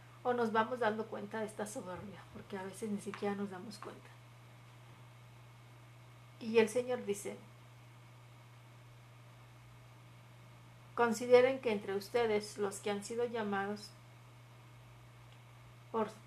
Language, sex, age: Spanish, female, 40-59